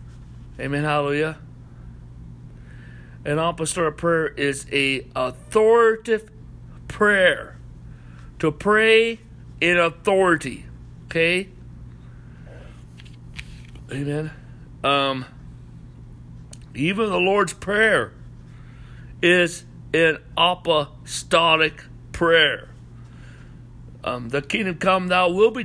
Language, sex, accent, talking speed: English, male, American, 75 wpm